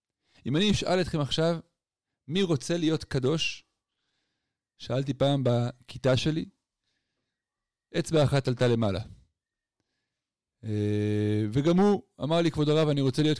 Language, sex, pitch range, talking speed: Hebrew, male, 120-150 Hz, 115 wpm